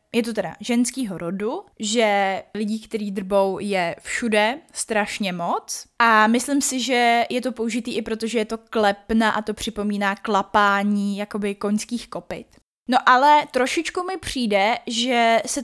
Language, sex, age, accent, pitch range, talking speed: Czech, female, 20-39, native, 205-245 Hz, 155 wpm